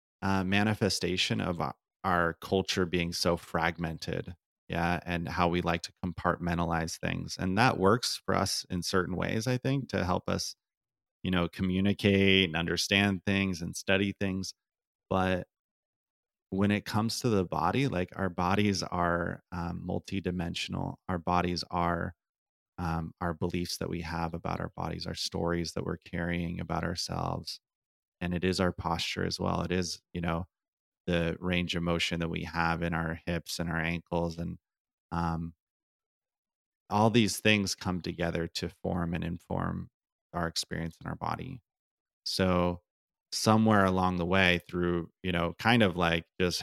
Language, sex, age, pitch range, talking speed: English, male, 30-49, 85-95 Hz, 155 wpm